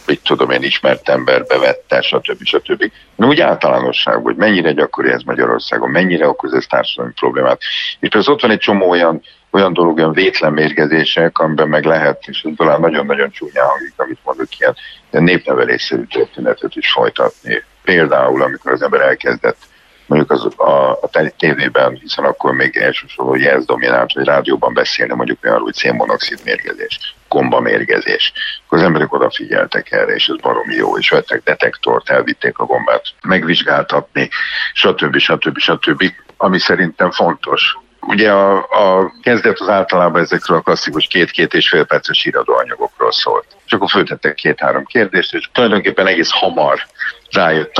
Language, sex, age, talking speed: Hungarian, male, 50-69, 155 wpm